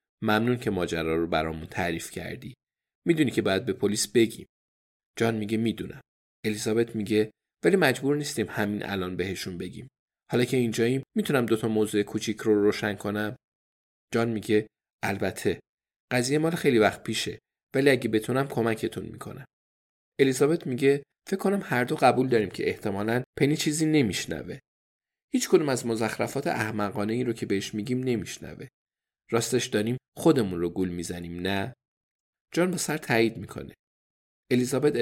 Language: Persian